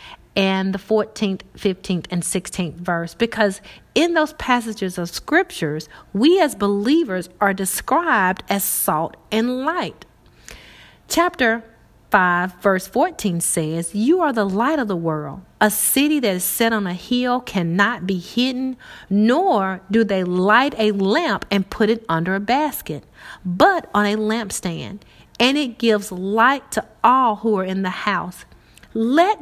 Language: English